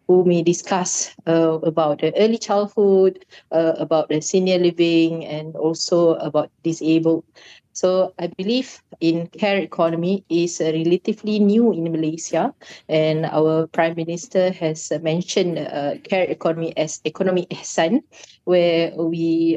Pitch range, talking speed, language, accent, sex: 155-190 Hz, 130 wpm, English, Malaysian, female